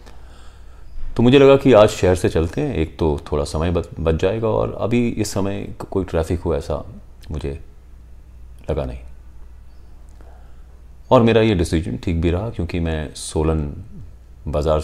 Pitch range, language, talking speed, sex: 65-100 Hz, Hindi, 150 wpm, male